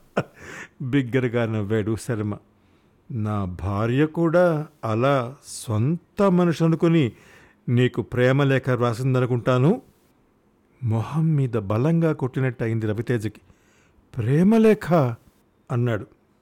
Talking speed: 75 wpm